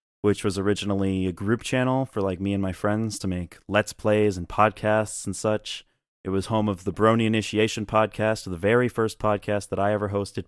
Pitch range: 95-115 Hz